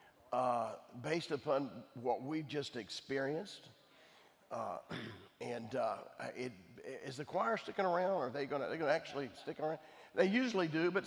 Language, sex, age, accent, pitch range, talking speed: English, male, 50-69, American, 140-180 Hz, 170 wpm